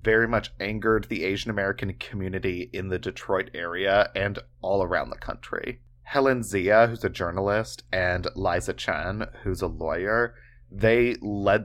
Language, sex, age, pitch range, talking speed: English, male, 20-39, 95-120 Hz, 150 wpm